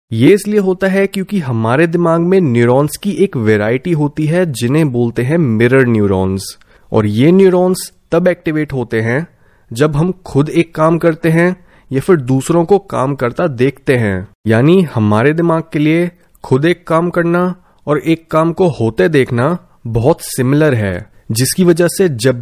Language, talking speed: Hindi, 170 wpm